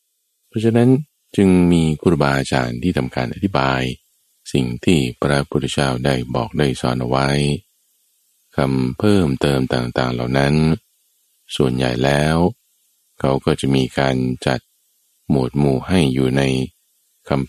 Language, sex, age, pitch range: Thai, male, 20-39, 65-80 Hz